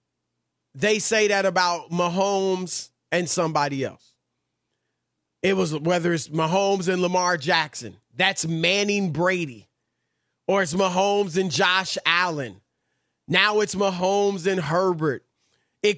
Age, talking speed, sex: 30-49, 115 wpm, male